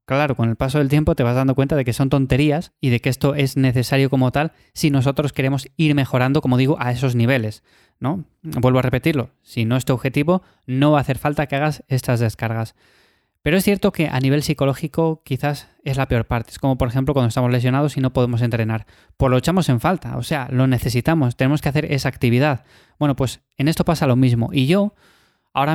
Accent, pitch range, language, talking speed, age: Spanish, 125-150 Hz, Spanish, 230 wpm, 20-39